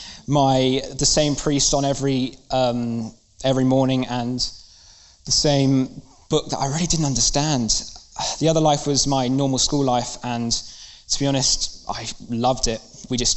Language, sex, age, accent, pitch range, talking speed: English, male, 20-39, British, 120-140 Hz, 155 wpm